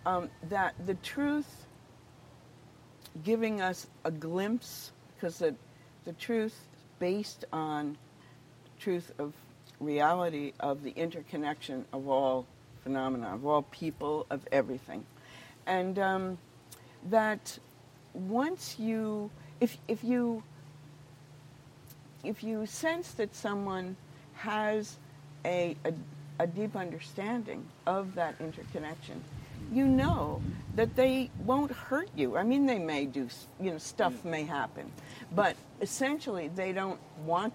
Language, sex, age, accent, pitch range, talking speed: English, female, 60-79, American, 140-195 Hz, 115 wpm